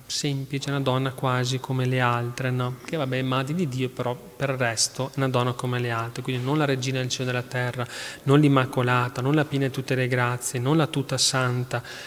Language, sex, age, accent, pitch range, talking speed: Italian, male, 30-49, native, 125-140 Hz, 220 wpm